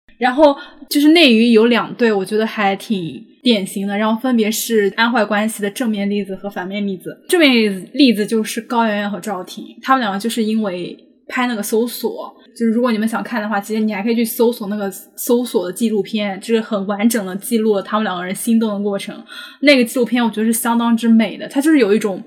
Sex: female